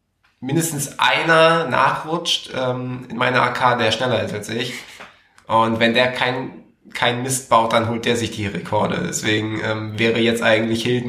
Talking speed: 170 wpm